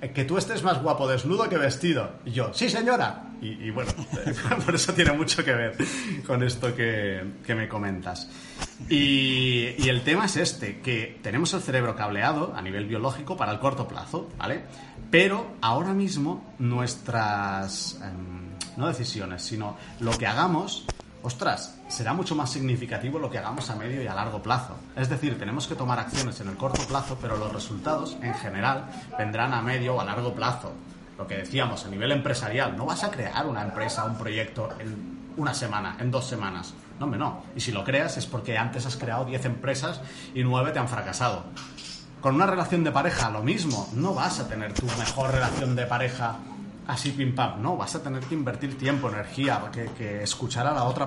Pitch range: 115-150 Hz